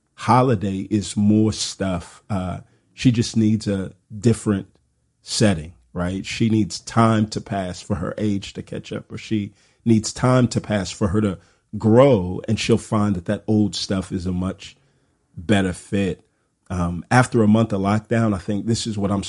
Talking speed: 175 wpm